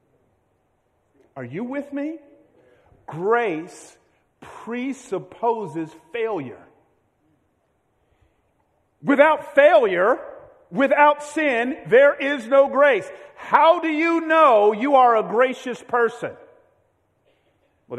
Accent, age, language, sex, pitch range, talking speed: American, 50-69, English, male, 185-285 Hz, 85 wpm